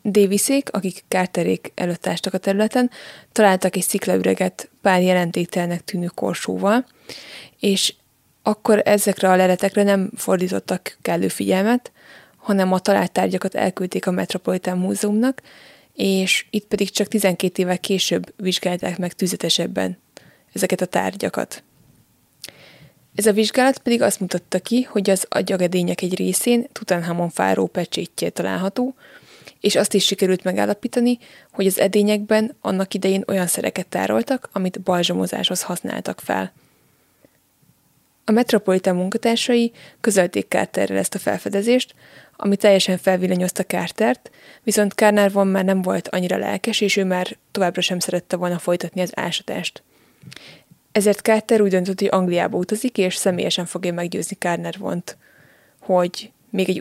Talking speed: 125 wpm